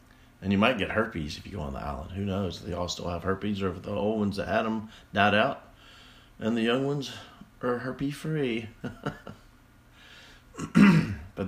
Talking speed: 190 wpm